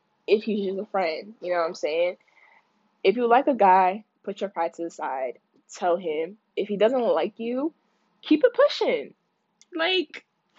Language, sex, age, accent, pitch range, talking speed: English, female, 10-29, American, 190-305 Hz, 180 wpm